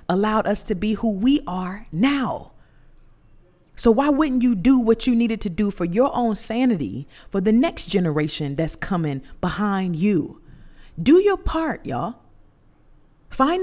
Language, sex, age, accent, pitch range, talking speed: English, female, 40-59, American, 175-245 Hz, 155 wpm